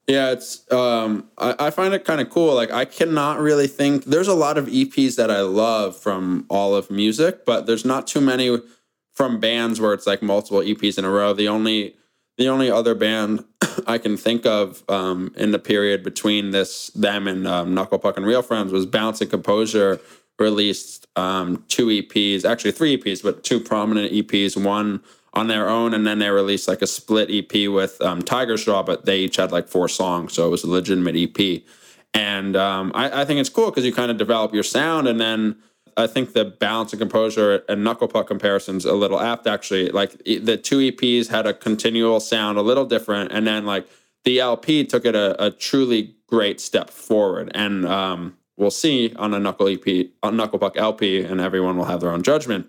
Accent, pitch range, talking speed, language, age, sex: American, 95-115 Hz, 205 wpm, English, 20-39, male